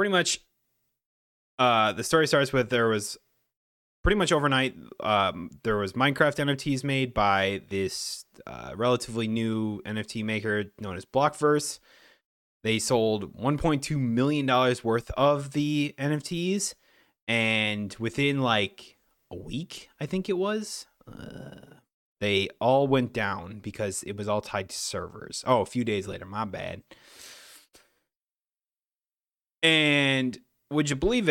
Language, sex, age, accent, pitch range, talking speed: English, male, 30-49, American, 110-145 Hz, 130 wpm